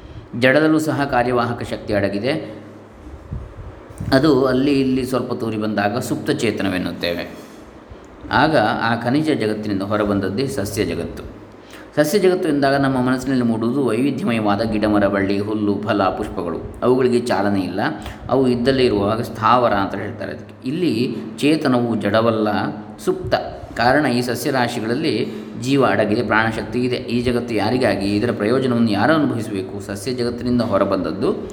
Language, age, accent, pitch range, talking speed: Kannada, 20-39, native, 105-130 Hz, 120 wpm